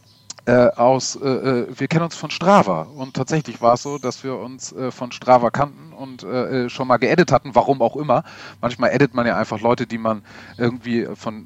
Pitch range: 110-125 Hz